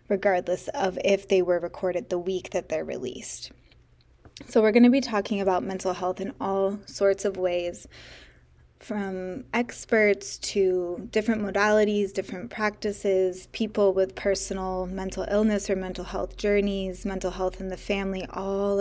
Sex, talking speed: female, 150 wpm